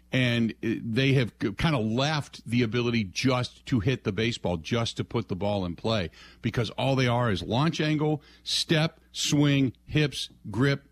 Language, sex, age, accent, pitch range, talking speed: English, male, 50-69, American, 100-135 Hz, 170 wpm